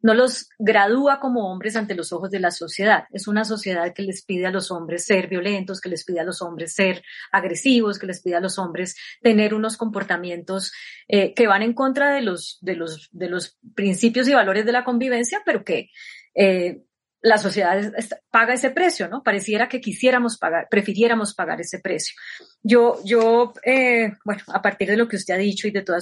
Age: 30-49